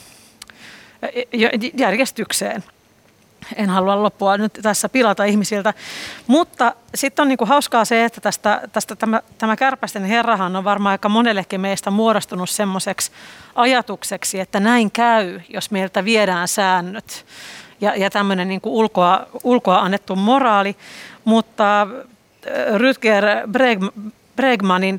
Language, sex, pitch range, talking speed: Finnish, female, 195-230 Hz, 110 wpm